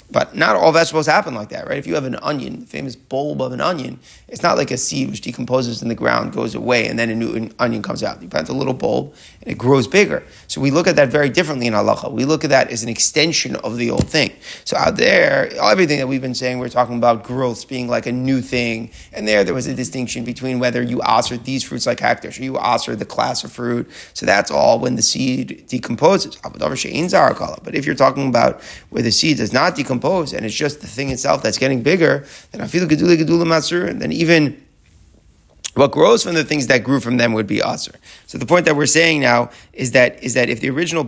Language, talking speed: English, 240 wpm